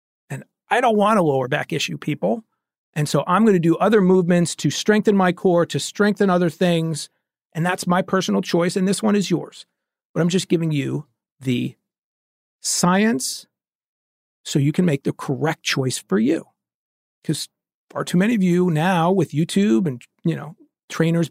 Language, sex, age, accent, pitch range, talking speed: English, male, 40-59, American, 155-195 Hz, 175 wpm